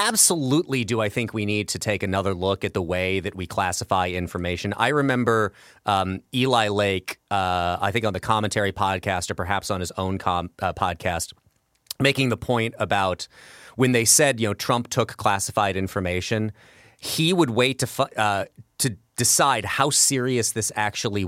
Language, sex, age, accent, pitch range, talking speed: English, male, 30-49, American, 100-120 Hz, 175 wpm